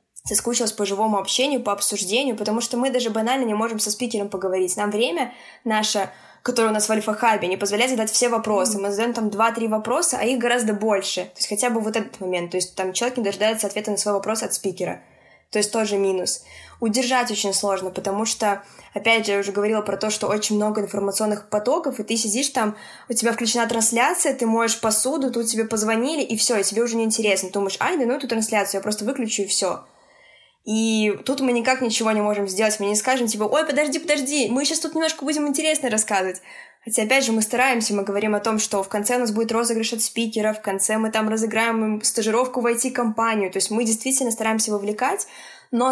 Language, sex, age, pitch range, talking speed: Russian, female, 20-39, 210-245 Hz, 215 wpm